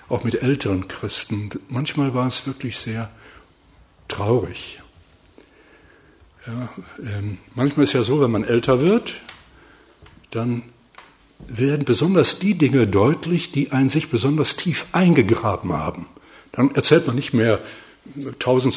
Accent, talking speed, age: German, 125 wpm, 60-79